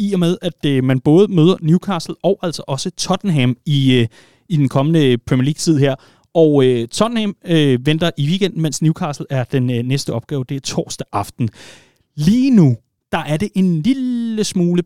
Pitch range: 125-155 Hz